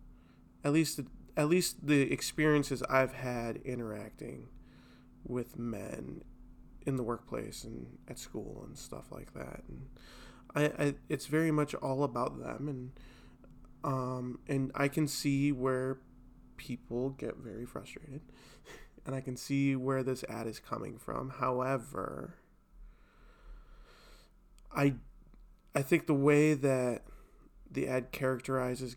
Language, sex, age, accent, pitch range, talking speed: English, male, 20-39, American, 125-145 Hz, 125 wpm